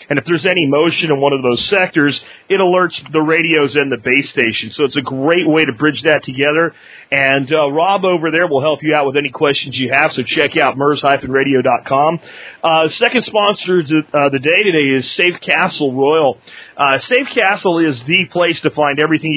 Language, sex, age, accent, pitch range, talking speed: English, male, 40-59, American, 140-165 Hz, 200 wpm